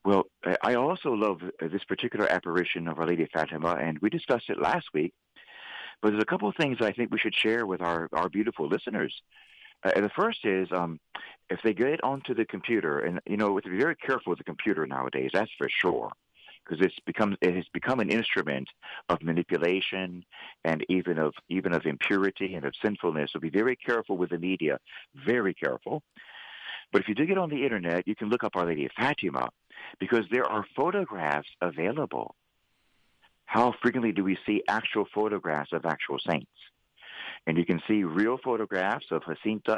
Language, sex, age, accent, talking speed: English, male, 50-69, American, 190 wpm